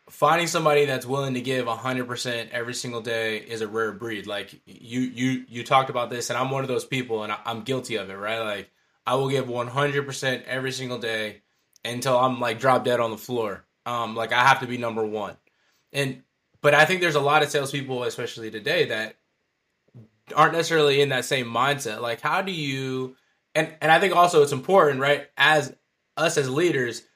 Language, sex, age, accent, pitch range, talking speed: English, male, 20-39, American, 120-150 Hz, 210 wpm